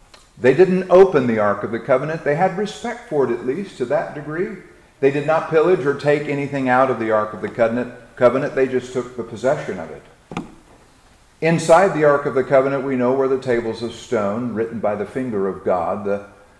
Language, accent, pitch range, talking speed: English, American, 125-155 Hz, 215 wpm